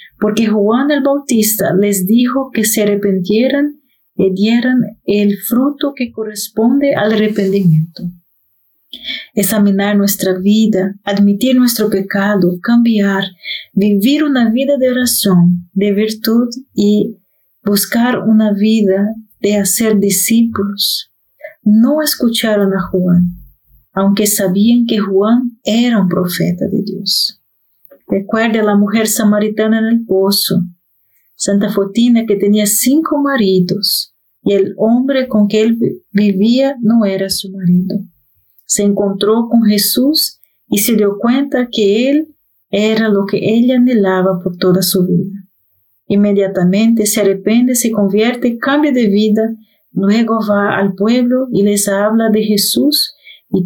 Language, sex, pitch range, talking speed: Spanish, female, 195-230 Hz, 125 wpm